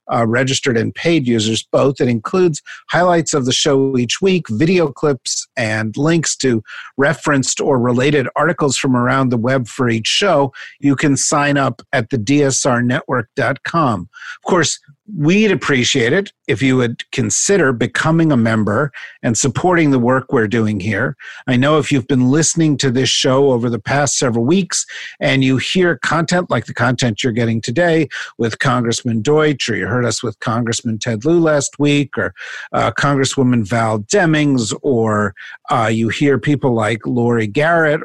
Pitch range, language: 120-150 Hz, English